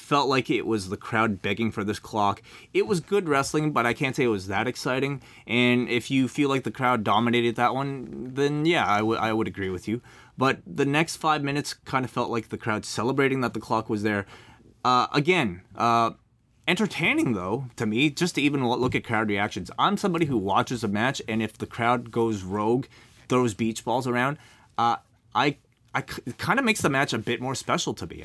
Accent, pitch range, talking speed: American, 105-130 Hz, 220 wpm